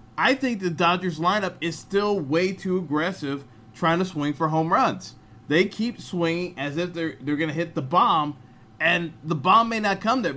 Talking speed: 205 wpm